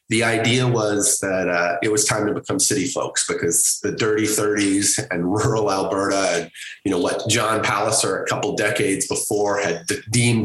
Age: 30-49